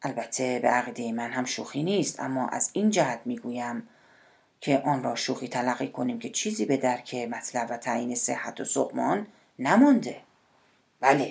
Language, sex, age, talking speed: Persian, female, 40-59, 160 wpm